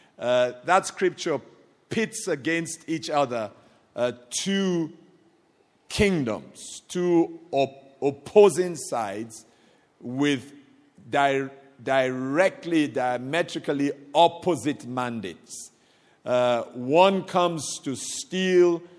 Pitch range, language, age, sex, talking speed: 125-170 Hz, English, 50-69, male, 75 wpm